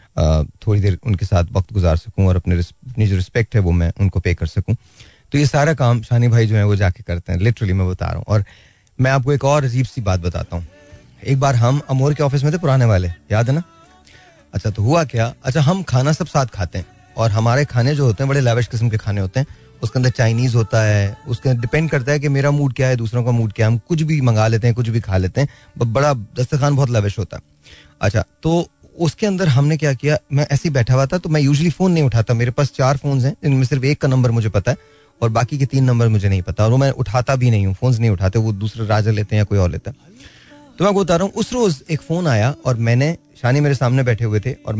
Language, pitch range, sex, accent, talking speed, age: Hindi, 100-140 Hz, male, native, 265 wpm, 30-49